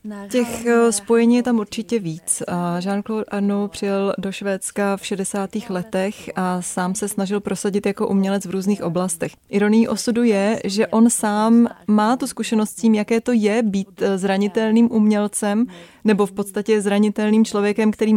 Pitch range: 190-215 Hz